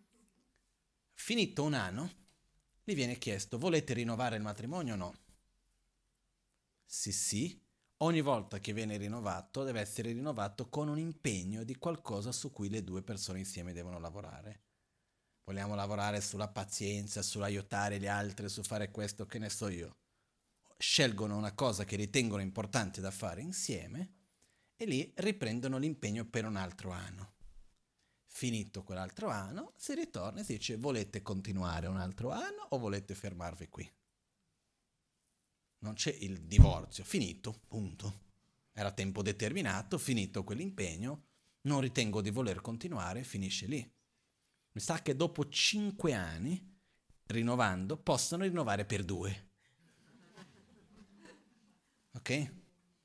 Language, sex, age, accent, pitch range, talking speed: Italian, male, 40-59, native, 100-145 Hz, 130 wpm